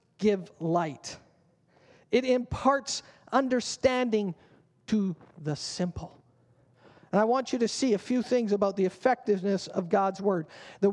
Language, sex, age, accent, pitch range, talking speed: English, male, 40-59, American, 165-215 Hz, 130 wpm